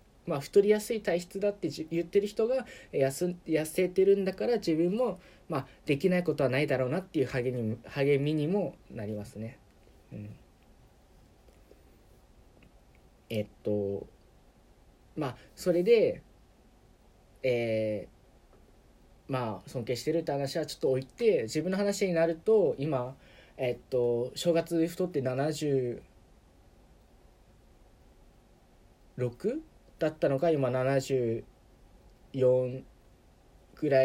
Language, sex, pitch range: Japanese, male, 125-185 Hz